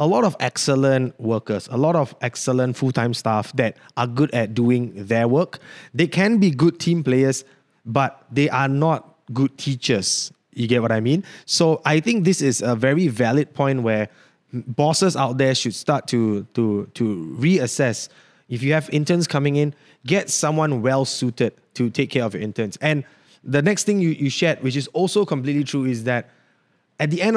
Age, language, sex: 20-39, English, male